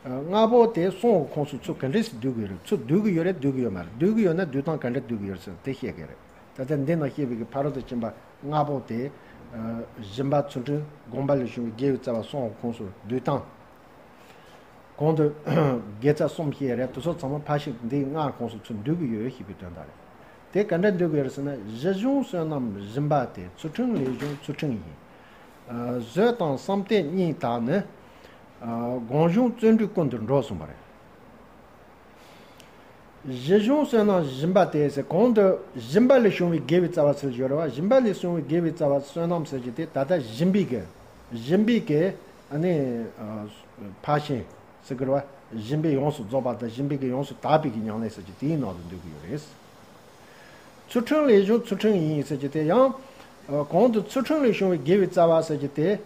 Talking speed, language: 40 wpm, English